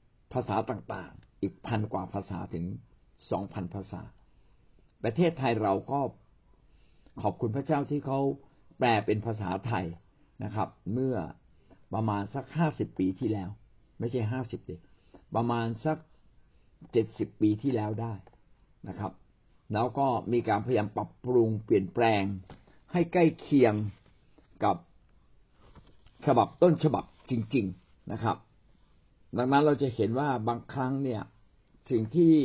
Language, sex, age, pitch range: Thai, male, 60-79, 100-135 Hz